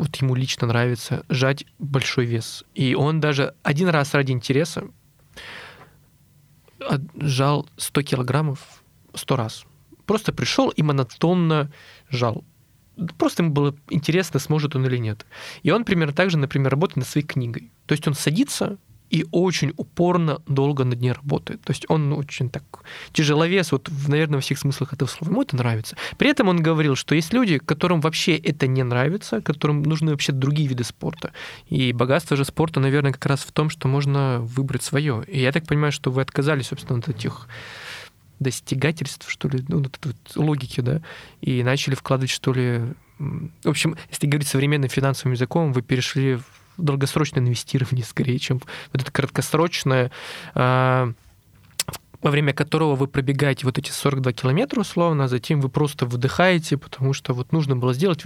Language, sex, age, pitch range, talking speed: Russian, male, 20-39, 130-155 Hz, 170 wpm